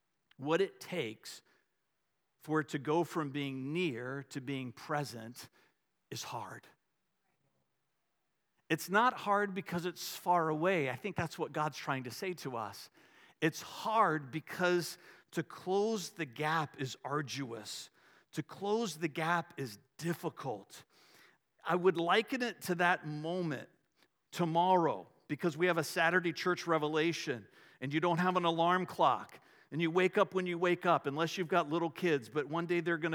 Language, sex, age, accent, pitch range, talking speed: English, male, 50-69, American, 150-190 Hz, 160 wpm